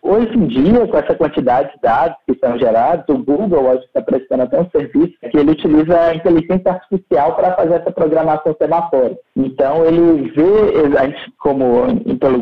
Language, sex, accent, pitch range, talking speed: Portuguese, male, Brazilian, 130-200 Hz, 175 wpm